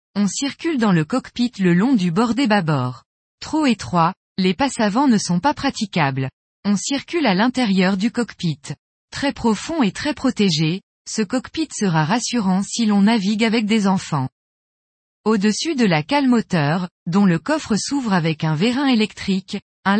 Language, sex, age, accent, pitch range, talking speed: French, female, 20-39, French, 180-245 Hz, 165 wpm